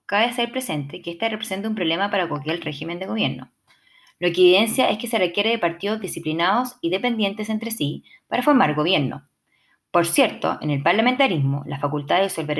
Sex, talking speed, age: female, 185 wpm, 20-39